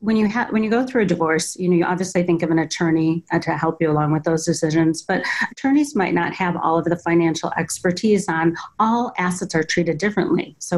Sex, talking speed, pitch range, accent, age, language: female, 230 wpm, 165-190 Hz, American, 30-49, English